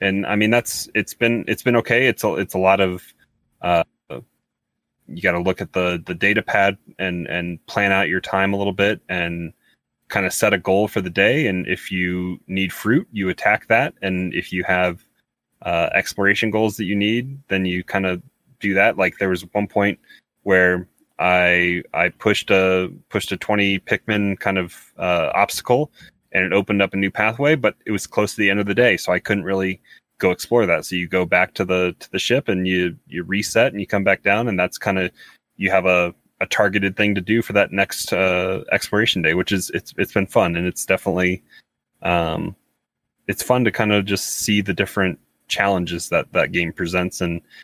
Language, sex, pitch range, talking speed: English, male, 90-100 Hz, 215 wpm